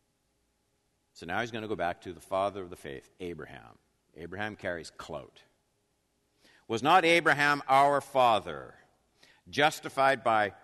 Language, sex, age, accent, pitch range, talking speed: English, male, 50-69, American, 125-155 Hz, 135 wpm